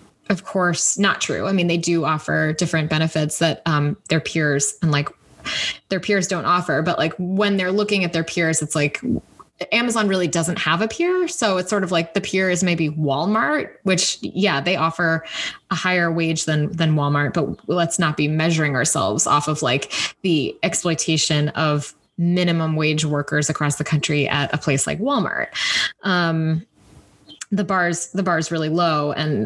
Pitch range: 155-190 Hz